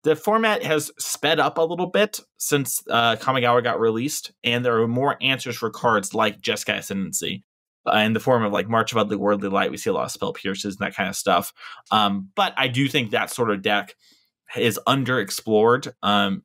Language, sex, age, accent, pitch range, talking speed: English, male, 20-39, American, 115-140 Hz, 210 wpm